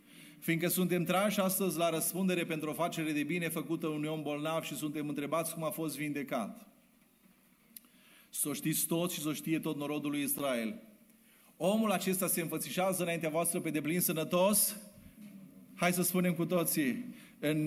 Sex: male